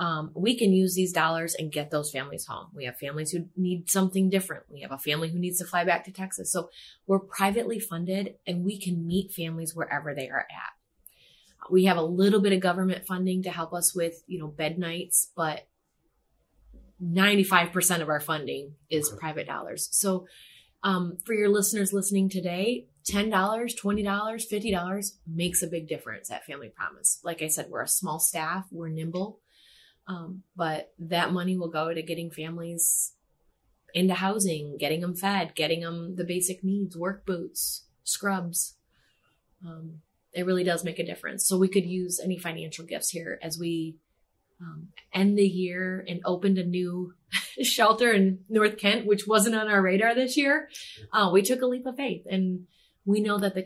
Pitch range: 165-195 Hz